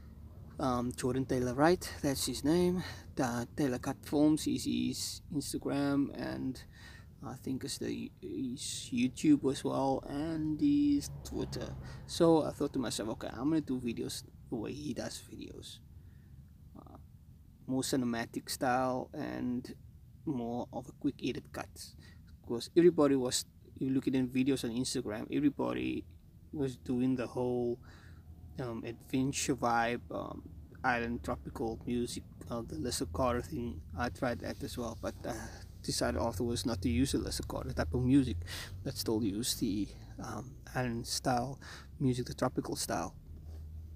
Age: 20-39